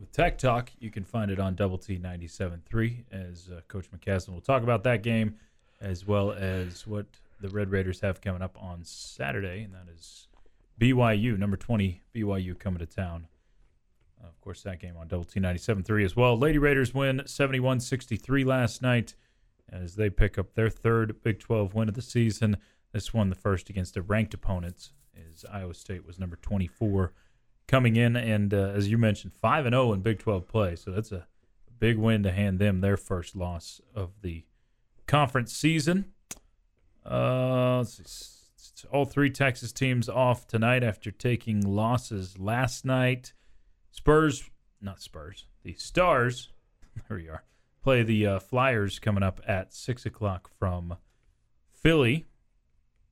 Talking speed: 165 wpm